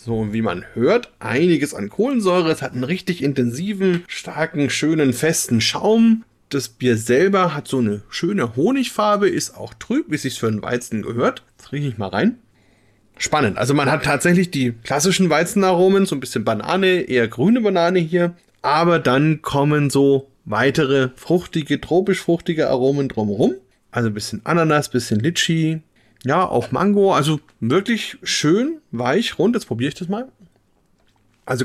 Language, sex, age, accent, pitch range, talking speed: German, male, 30-49, German, 130-180 Hz, 165 wpm